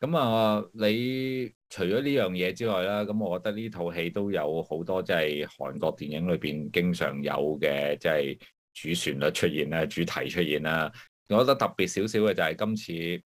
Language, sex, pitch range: Chinese, male, 80-100 Hz